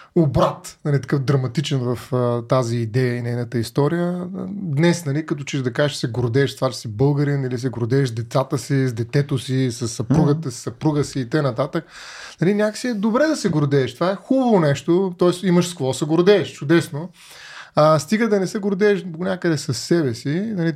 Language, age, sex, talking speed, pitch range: Bulgarian, 30-49, male, 200 wpm, 135-175 Hz